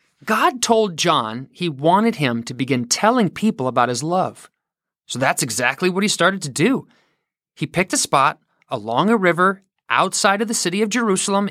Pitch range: 145-220 Hz